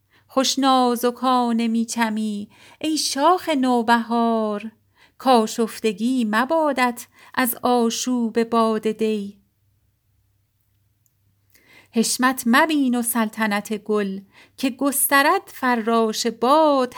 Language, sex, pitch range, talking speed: Persian, female, 215-270 Hz, 80 wpm